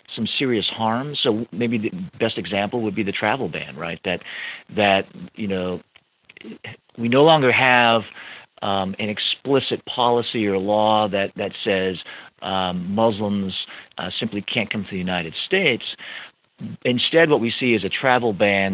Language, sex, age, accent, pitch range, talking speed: English, male, 50-69, American, 95-120 Hz, 155 wpm